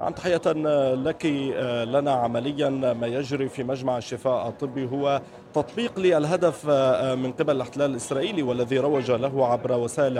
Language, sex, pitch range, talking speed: Arabic, male, 125-150 Hz, 135 wpm